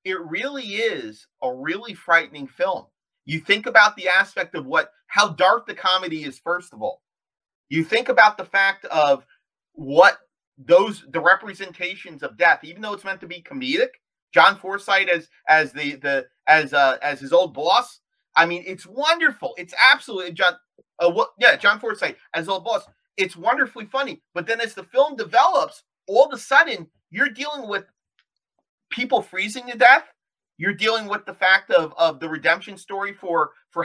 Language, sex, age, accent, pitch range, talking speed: English, male, 30-49, American, 170-240 Hz, 175 wpm